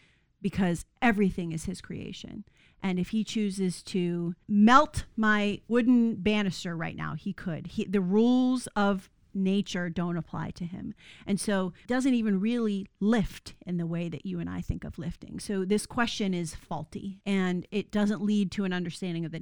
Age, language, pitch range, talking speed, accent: 40-59, English, 185-225 Hz, 180 wpm, American